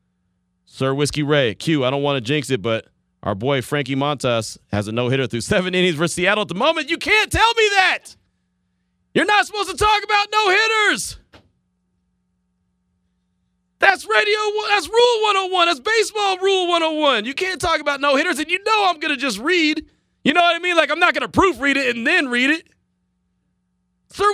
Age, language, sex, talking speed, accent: 30-49, English, male, 190 wpm, American